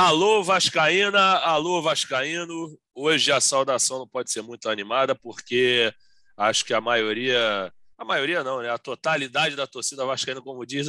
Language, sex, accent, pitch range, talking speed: Portuguese, male, Brazilian, 135-165 Hz, 155 wpm